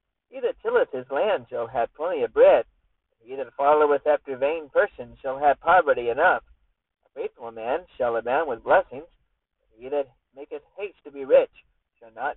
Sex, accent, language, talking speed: male, American, English, 185 wpm